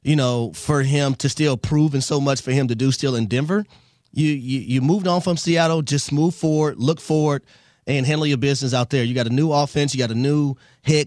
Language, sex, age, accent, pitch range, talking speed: English, male, 30-49, American, 135-165 Hz, 245 wpm